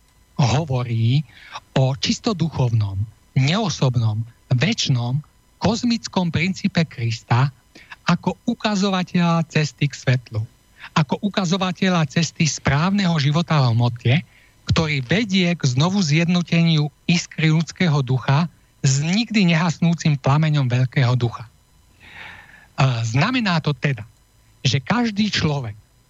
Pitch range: 125-175 Hz